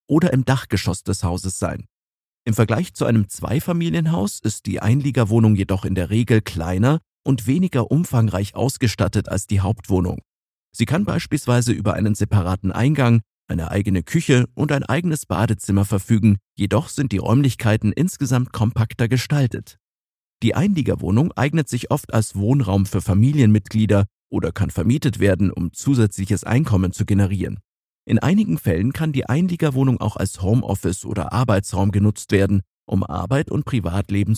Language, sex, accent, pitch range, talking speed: German, male, German, 95-130 Hz, 145 wpm